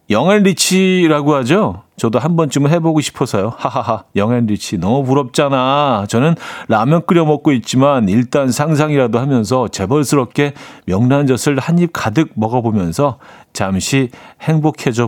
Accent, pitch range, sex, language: native, 115-155 Hz, male, Korean